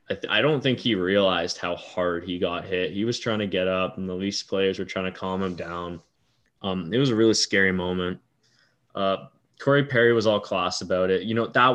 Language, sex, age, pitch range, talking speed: English, male, 10-29, 110-130 Hz, 230 wpm